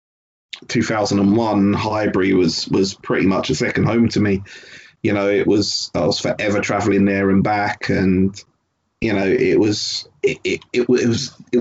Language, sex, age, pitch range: English, male, 30-49, 100-125 Hz